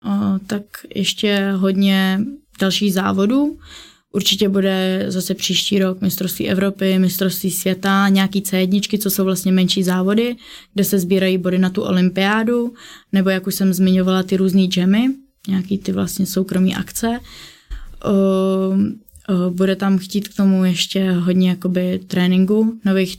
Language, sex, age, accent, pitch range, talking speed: Czech, female, 20-39, native, 185-205 Hz, 140 wpm